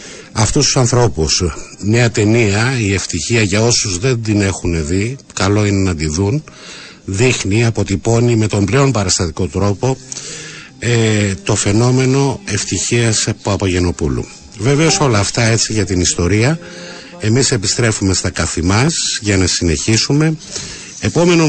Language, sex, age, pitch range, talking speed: Greek, male, 50-69, 100-135 Hz, 130 wpm